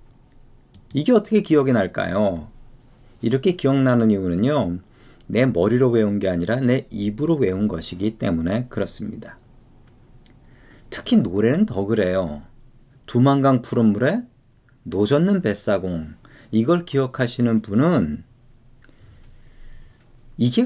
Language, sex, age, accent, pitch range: Korean, male, 40-59, native, 110-140 Hz